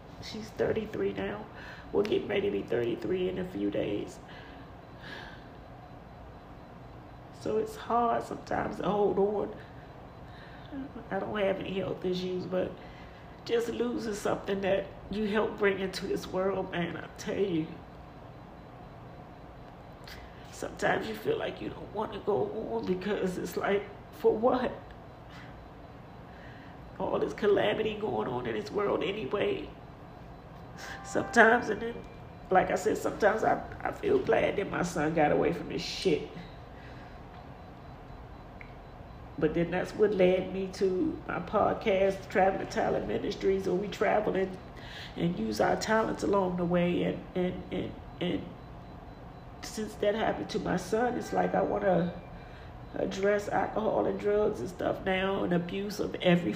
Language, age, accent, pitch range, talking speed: English, 40-59, American, 185-215 Hz, 140 wpm